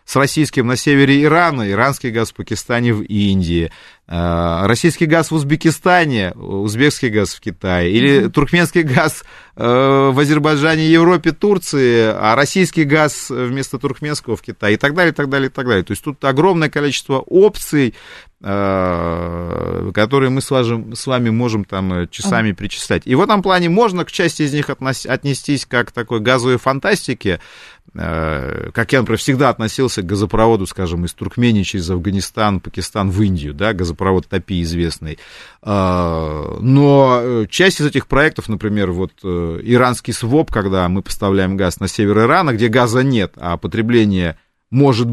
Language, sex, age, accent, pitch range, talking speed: Russian, male, 30-49, native, 100-140 Hz, 150 wpm